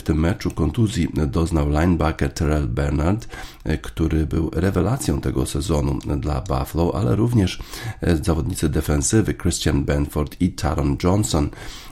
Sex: male